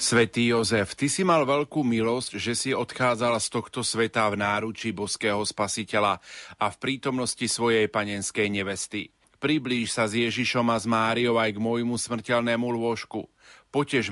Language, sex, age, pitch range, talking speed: Slovak, male, 40-59, 110-130 Hz, 155 wpm